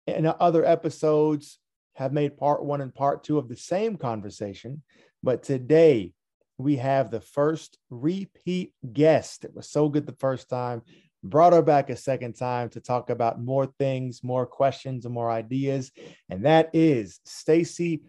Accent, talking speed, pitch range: American, 165 wpm, 125-155 Hz